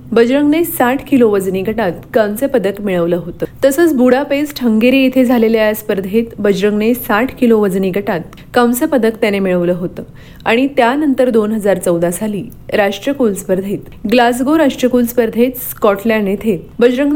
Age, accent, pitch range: 30-49, native, 205-265 Hz